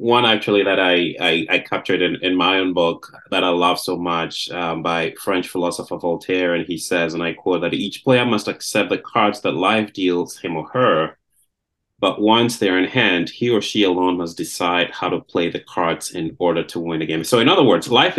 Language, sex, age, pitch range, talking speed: English, male, 30-49, 90-120 Hz, 225 wpm